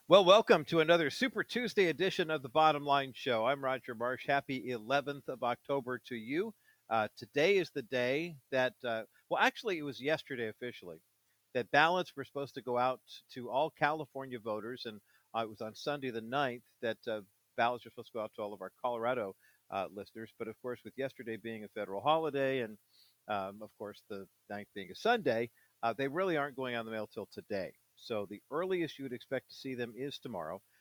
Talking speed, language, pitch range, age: 210 wpm, English, 115-145 Hz, 50-69